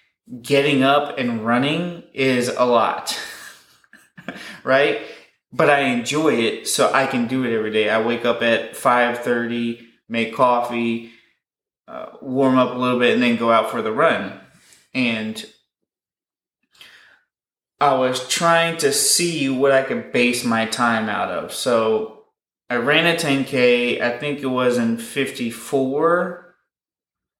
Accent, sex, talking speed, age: American, male, 140 wpm, 20-39